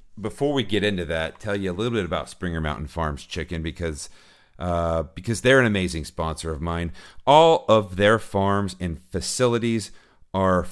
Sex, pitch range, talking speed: male, 85-115 Hz, 175 wpm